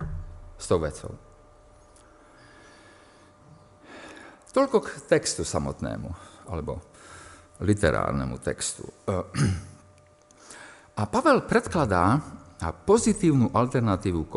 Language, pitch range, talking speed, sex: Slovak, 85-130 Hz, 60 wpm, male